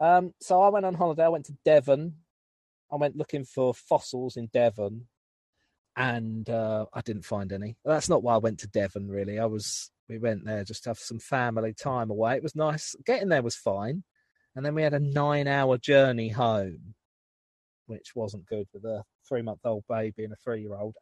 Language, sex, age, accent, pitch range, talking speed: English, male, 40-59, British, 105-145 Hz, 195 wpm